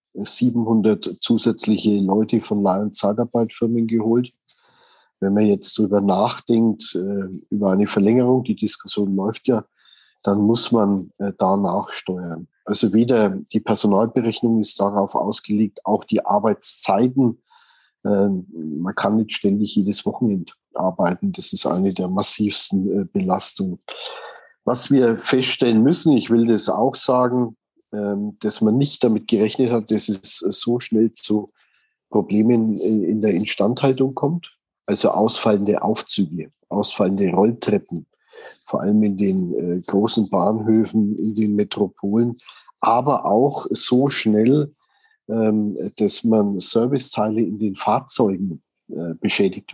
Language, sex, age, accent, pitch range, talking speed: German, male, 50-69, German, 100-120 Hz, 120 wpm